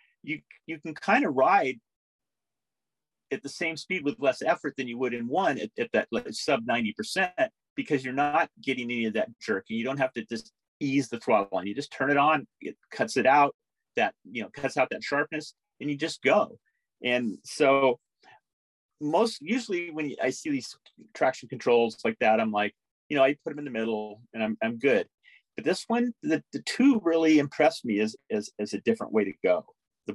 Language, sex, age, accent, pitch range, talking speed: English, male, 40-59, American, 110-165 Hz, 210 wpm